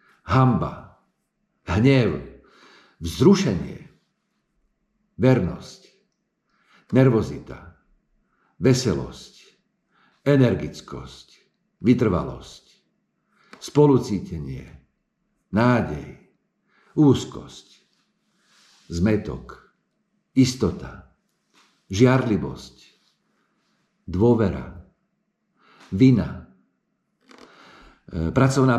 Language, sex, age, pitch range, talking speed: Slovak, male, 50-69, 95-145 Hz, 35 wpm